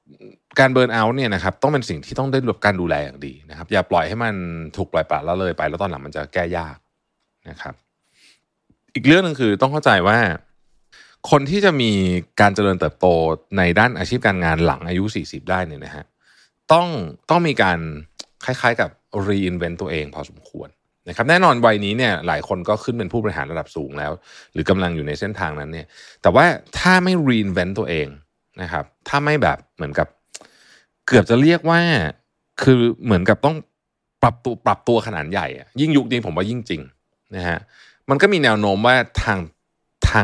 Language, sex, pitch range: Thai, male, 85-125 Hz